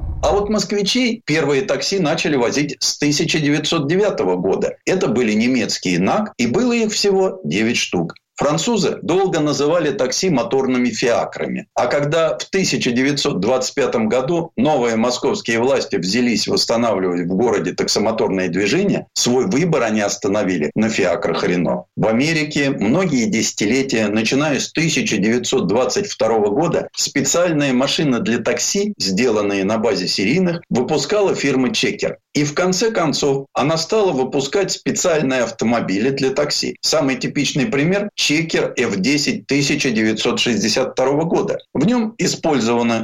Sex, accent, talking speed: male, native, 120 wpm